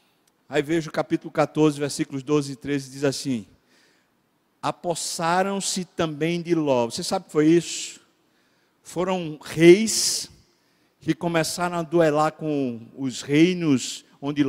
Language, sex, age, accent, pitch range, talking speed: Portuguese, male, 60-79, Brazilian, 145-190 Hz, 130 wpm